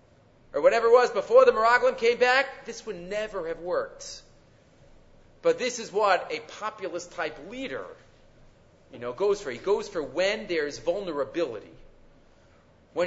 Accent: Canadian